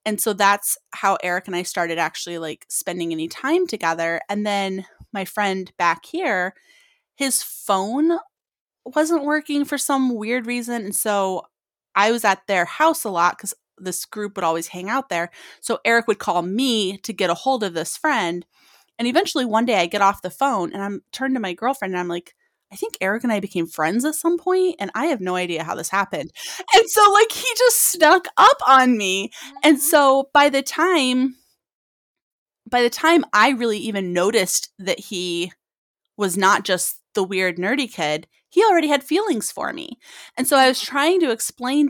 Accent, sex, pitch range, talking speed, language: American, female, 190-290 Hz, 195 wpm, English